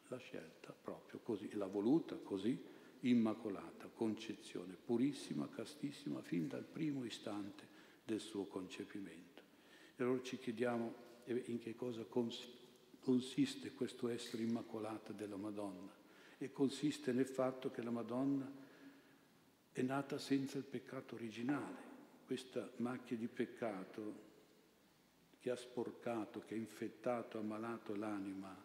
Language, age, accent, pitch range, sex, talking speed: Italian, 60-79, native, 100-125 Hz, male, 115 wpm